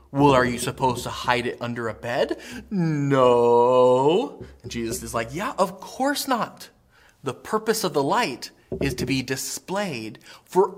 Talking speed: 160 wpm